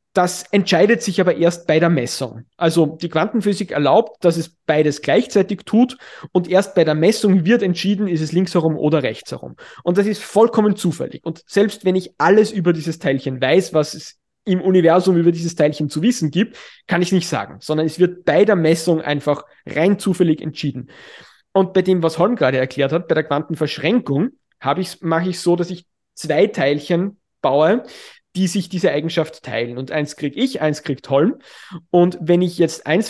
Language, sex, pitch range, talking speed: German, male, 155-195 Hz, 195 wpm